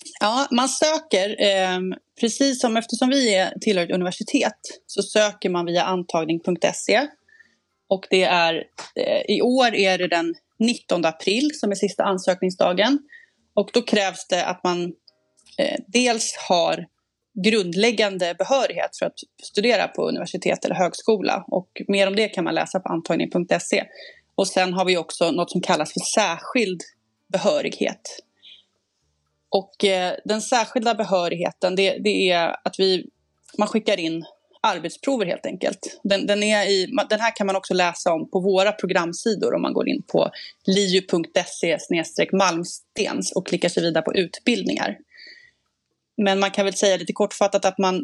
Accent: native